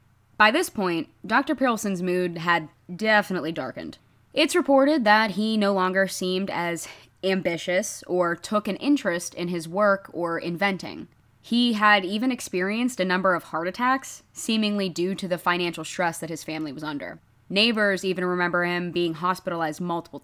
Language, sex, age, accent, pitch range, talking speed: English, female, 20-39, American, 165-210 Hz, 160 wpm